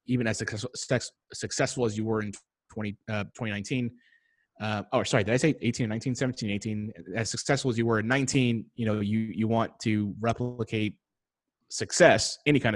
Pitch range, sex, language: 110-130 Hz, male, English